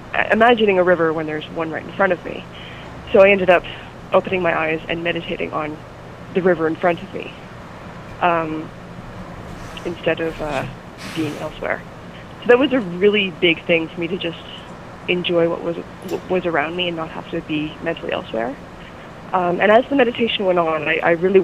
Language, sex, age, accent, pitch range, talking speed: English, female, 20-39, American, 160-190 Hz, 190 wpm